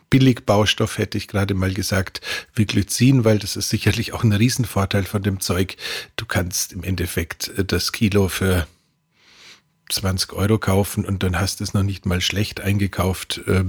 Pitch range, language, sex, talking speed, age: 100-115 Hz, German, male, 170 wpm, 50-69